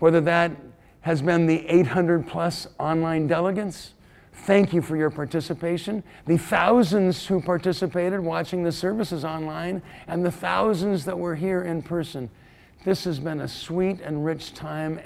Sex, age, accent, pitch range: male, 50-69, American, 160-200 Hz